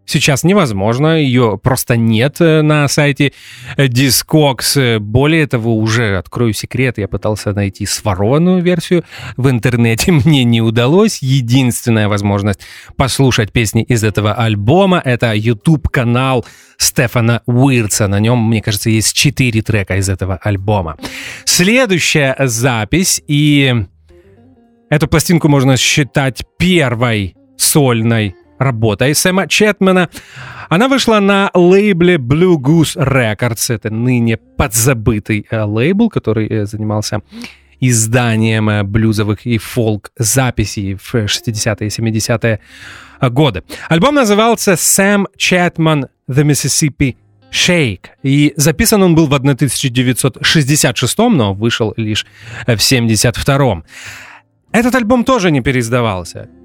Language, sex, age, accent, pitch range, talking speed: Russian, male, 30-49, native, 110-150 Hz, 105 wpm